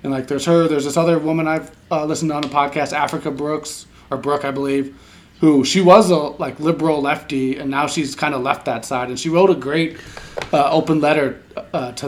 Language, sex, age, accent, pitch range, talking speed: English, male, 30-49, American, 125-155 Hz, 230 wpm